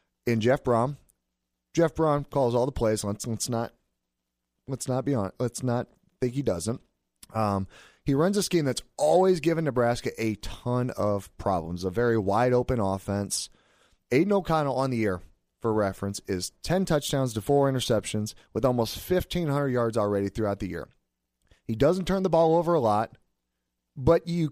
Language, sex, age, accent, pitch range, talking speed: English, male, 30-49, American, 95-140 Hz, 175 wpm